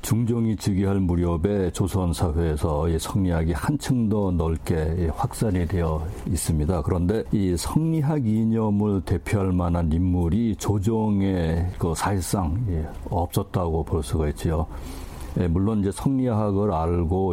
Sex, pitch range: male, 85-105 Hz